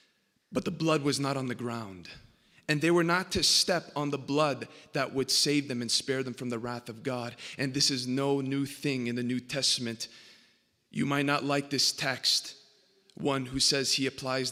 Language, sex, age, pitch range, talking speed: English, male, 30-49, 125-145 Hz, 205 wpm